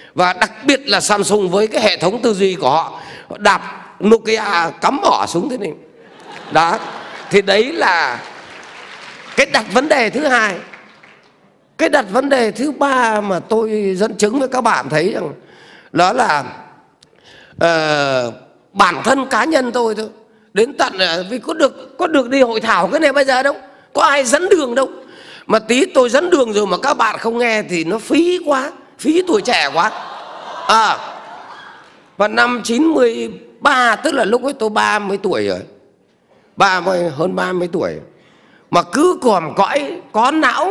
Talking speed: 175 wpm